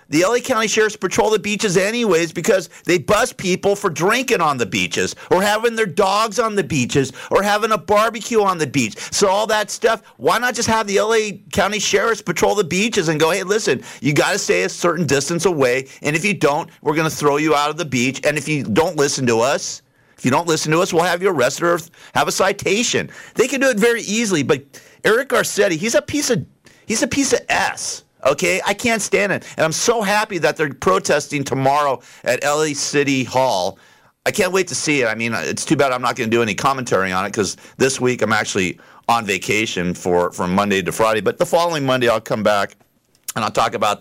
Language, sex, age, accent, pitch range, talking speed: English, male, 50-69, American, 140-210 Hz, 230 wpm